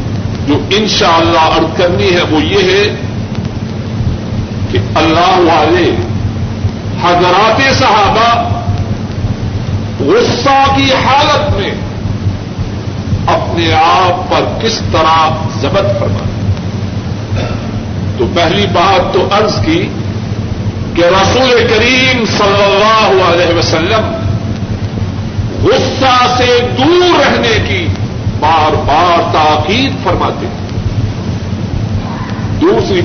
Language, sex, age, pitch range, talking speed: Urdu, male, 50-69, 100-110 Hz, 85 wpm